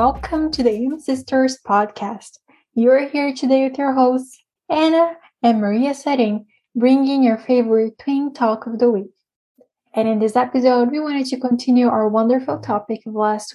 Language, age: English, 10-29